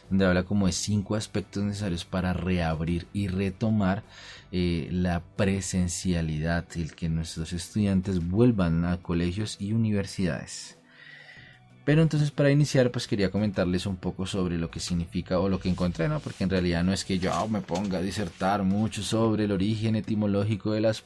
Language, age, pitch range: Spanish, 30-49, 90-105 Hz